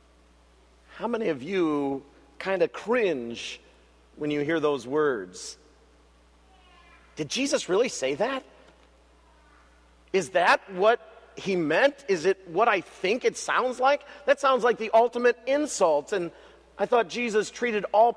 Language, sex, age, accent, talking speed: English, male, 40-59, American, 140 wpm